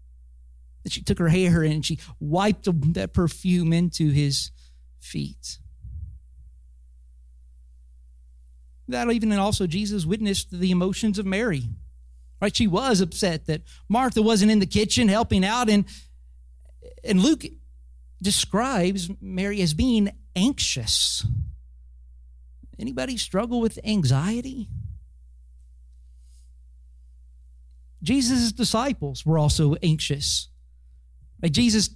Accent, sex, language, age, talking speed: American, male, English, 50-69, 100 wpm